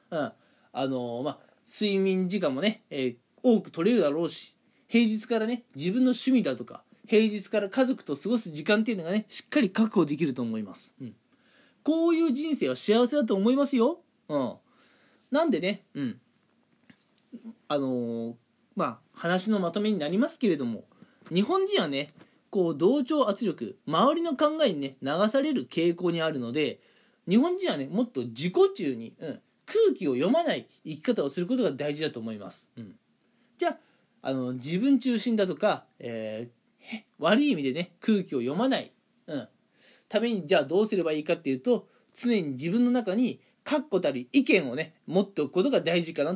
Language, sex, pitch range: Japanese, male, 165-260 Hz